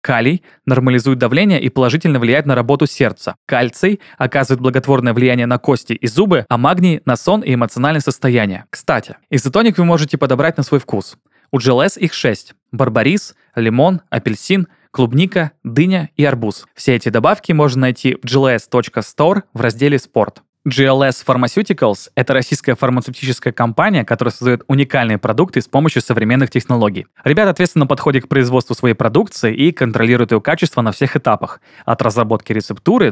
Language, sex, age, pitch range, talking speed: Russian, male, 20-39, 120-150 Hz, 155 wpm